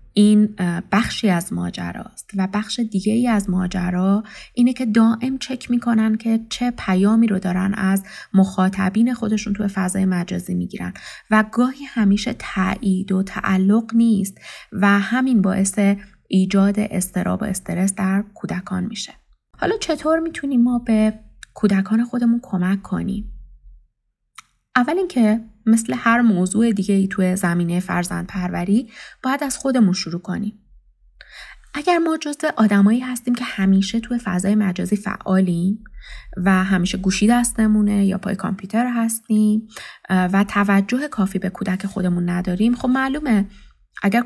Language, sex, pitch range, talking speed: Persian, female, 190-230 Hz, 135 wpm